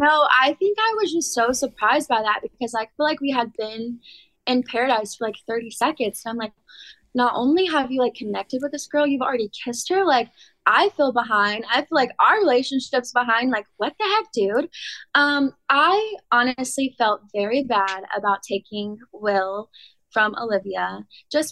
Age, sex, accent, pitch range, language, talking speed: 20-39, female, American, 220-280 Hz, English, 185 wpm